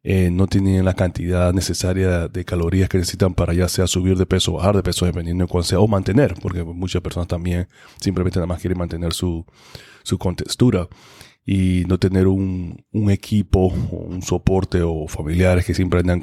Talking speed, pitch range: 190 wpm, 90-105 Hz